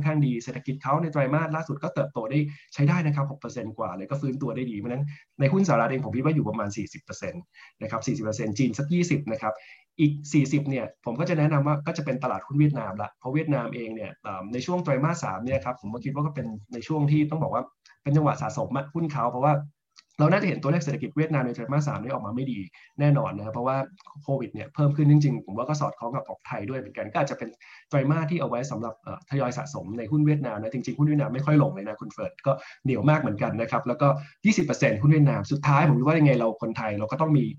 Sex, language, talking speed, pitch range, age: male, English, 30 wpm, 125-150 Hz, 20-39